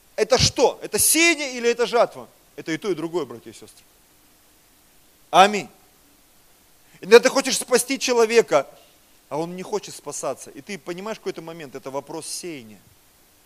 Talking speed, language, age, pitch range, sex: 150 wpm, Russian, 30-49, 180-235 Hz, male